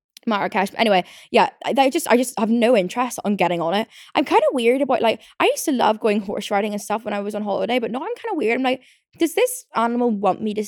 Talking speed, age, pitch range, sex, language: 270 wpm, 10-29, 205-275 Hz, female, English